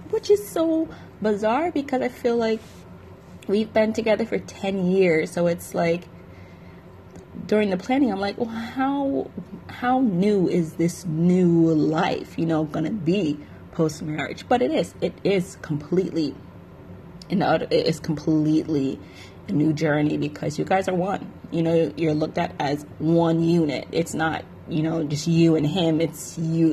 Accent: American